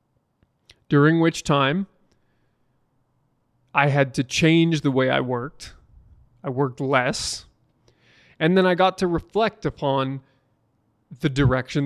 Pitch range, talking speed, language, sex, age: 135-170 Hz, 115 wpm, English, male, 20-39